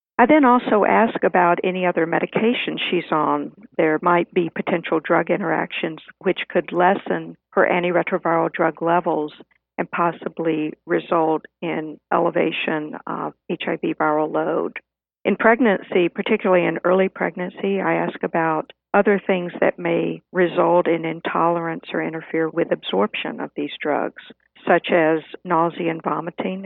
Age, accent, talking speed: 50-69, American, 135 wpm